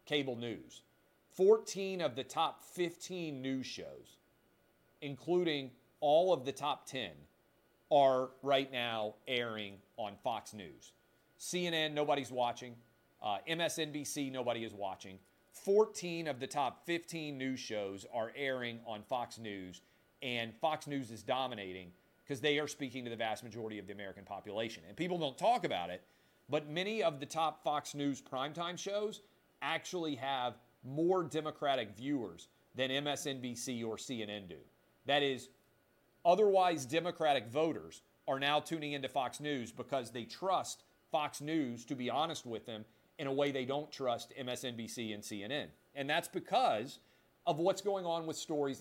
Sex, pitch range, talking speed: male, 120-160 Hz, 150 wpm